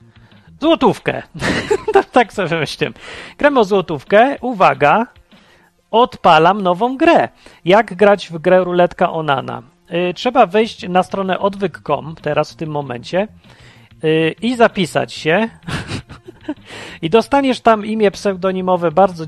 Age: 40-59